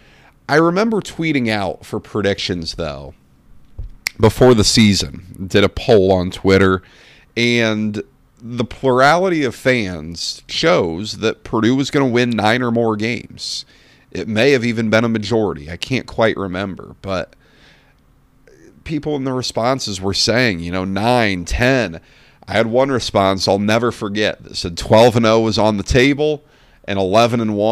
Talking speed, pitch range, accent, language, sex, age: 155 wpm, 100-135 Hz, American, English, male, 40-59